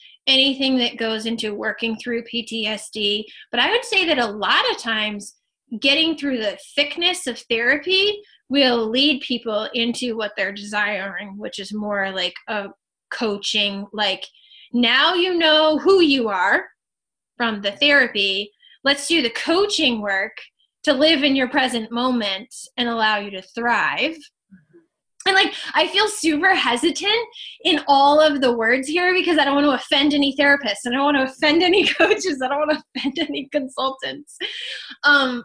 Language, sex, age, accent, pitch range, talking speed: English, female, 10-29, American, 220-295 Hz, 165 wpm